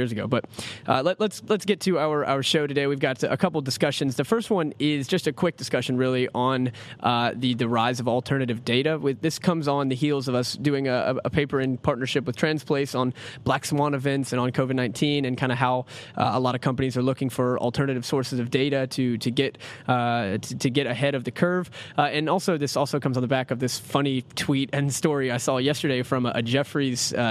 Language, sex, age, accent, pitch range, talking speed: English, male, 20-39, American, 125-145 Hz, 235 wpm